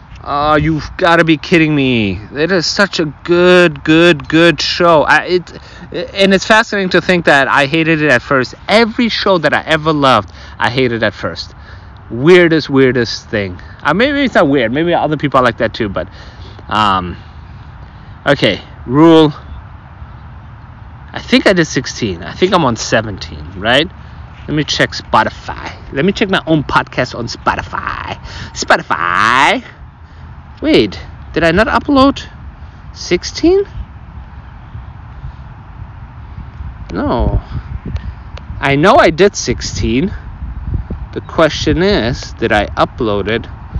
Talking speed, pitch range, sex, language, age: 140 wpm, 100-170 Hz, male, English, 30-49